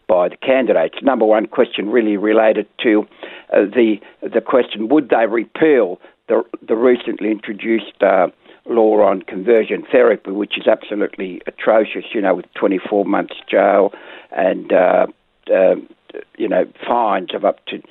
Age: 60-79